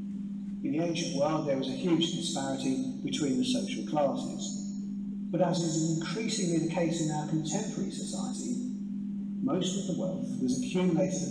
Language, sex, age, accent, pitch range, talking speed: English, male, 40-59, British, 175-200 Hz, 160 wpm